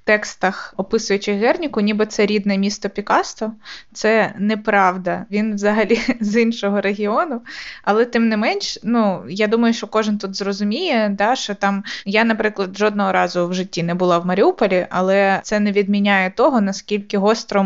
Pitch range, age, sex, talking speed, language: 195-220 Hz, 20-39, female, 155 wpm, Ukrainian